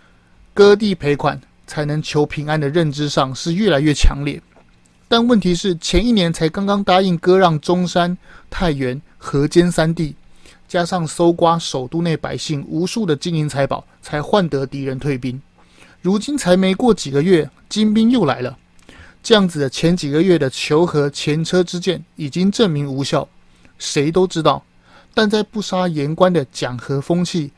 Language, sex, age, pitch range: Chinese, male, 30-49, 145-185 Hz